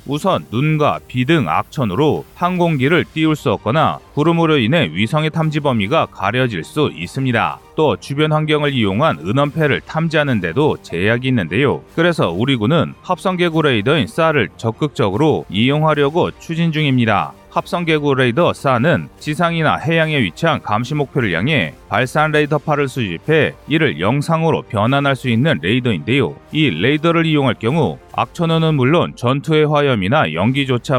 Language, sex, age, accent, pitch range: Korean, male, 30-49, native, 120-155 Hz